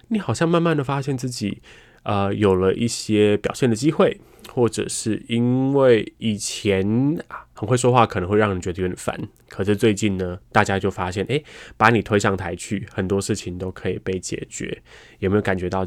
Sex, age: male, 20-39